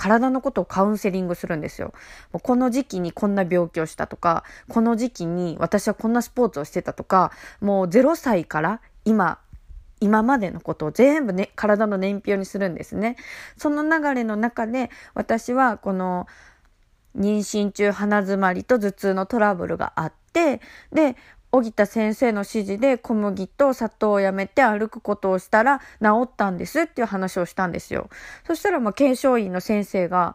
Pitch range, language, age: 190-265 Hz, Japanese, 20-39